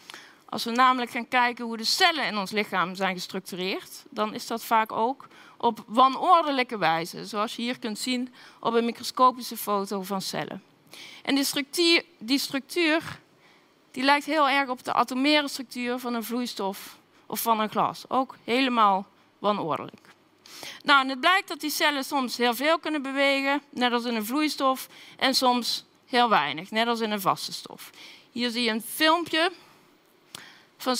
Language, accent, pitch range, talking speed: Dutch, Dutch, 225-285 Hz, 170 wpm